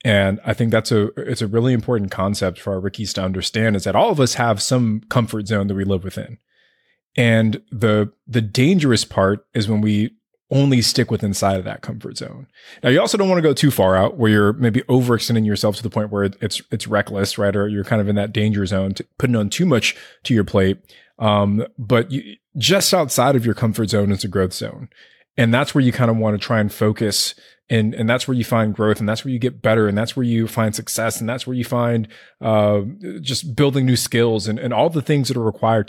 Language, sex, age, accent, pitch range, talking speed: English, male, 20-39, American, 105-135 Hz, 240 wpm